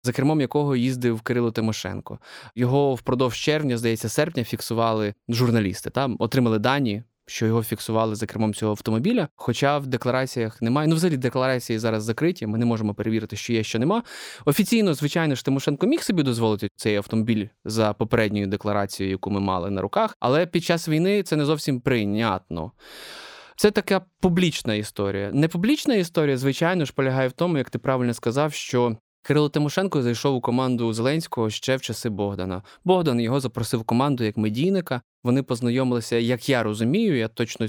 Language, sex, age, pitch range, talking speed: Ukrainian, male, 20-39, 115-150 Hz, 165 wpm